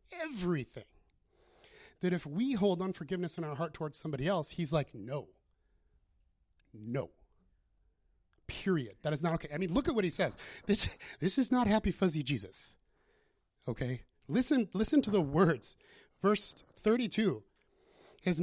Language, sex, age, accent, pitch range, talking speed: English, male, 30-49, American, 135-195 Hz, 145 wpm